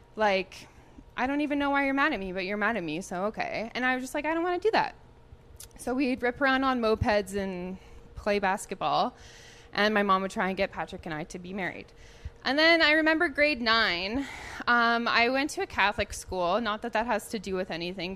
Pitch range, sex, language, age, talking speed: 190-270 Hz, female, English, 20-39, 235 wpm